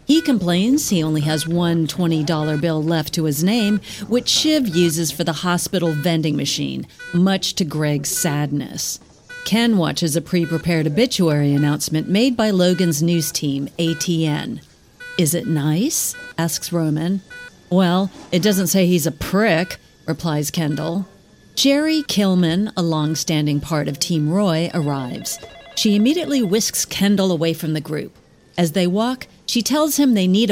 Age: 40-59